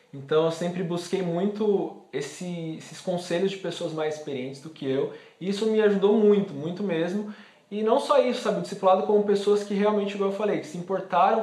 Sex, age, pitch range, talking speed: male, 20-39, 150-180 Hz, 205 wpm